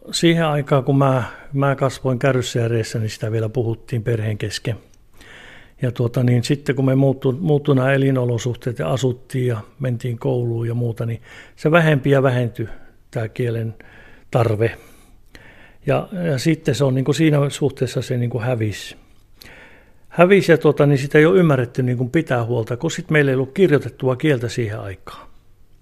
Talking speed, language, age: 160 wpm, Finnish, 60-79